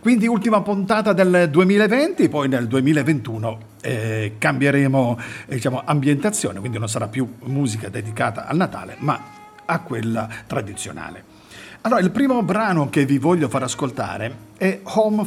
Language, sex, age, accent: Italian, male, 50-69, native